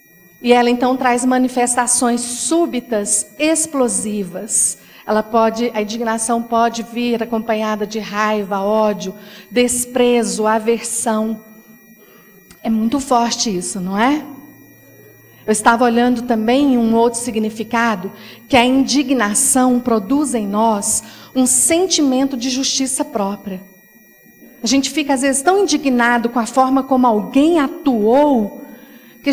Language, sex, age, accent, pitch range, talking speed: Portuguese, female, 40-59, Brazilian, 225-290 Hz, 115 wpm